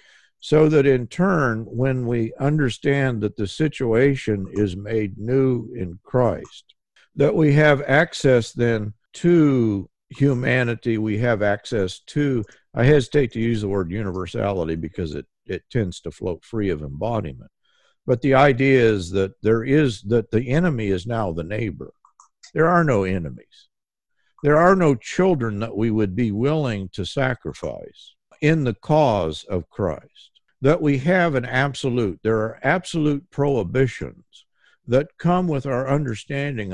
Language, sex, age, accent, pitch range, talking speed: English, male, 50-69, American, 105-140 Hz, 145 wpm